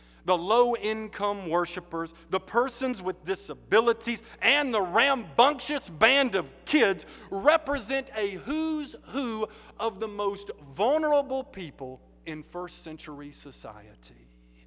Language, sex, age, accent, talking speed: English, male, 50-69, American, 105 wpm